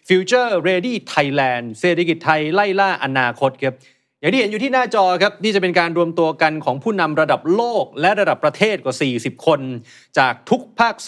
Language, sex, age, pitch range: Thai, male, 30-49, 135-180 Hz